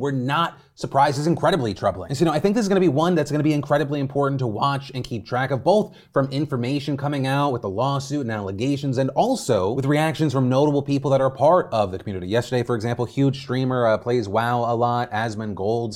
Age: 30-49